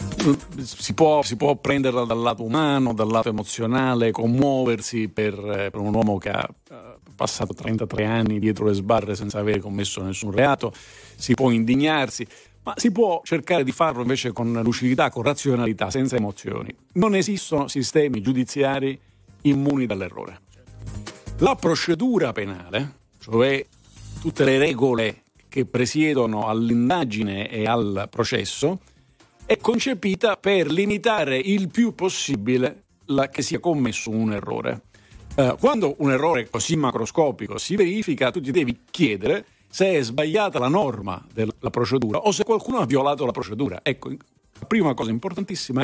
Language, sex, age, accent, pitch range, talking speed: Italian, male, 50-69, native, 110-160 Hz, 135 wpm